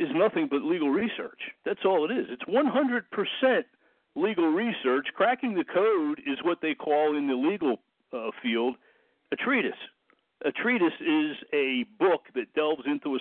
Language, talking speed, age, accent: English, 165 wpm, 60-79, American